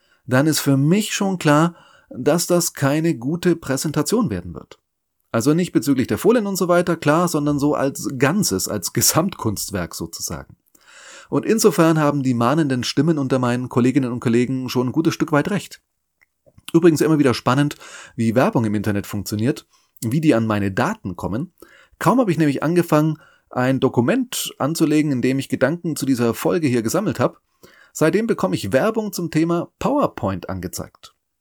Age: 30-49